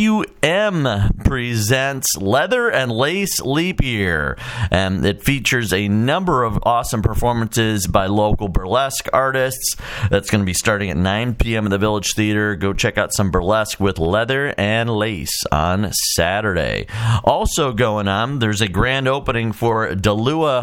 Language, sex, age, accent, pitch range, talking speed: English, male, 40-59, American, 100-125 Hz, 150 wpm